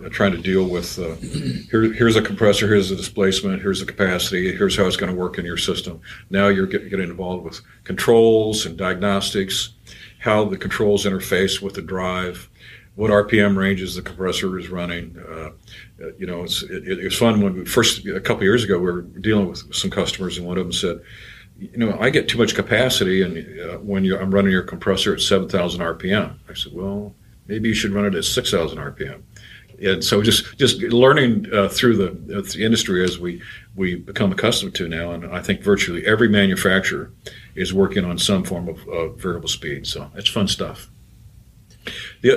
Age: 50-69